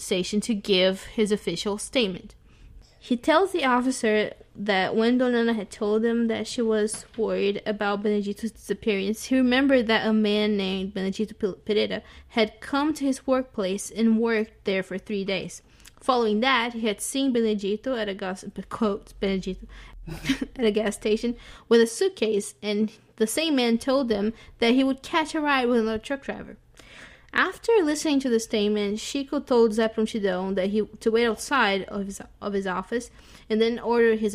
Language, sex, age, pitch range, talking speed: English, female, 20-39, 200-235 Hz, 175 wpm